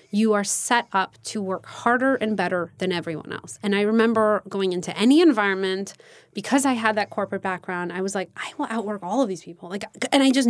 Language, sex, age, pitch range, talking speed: English, female, 20-39, 180-220 Hz, 225 wpm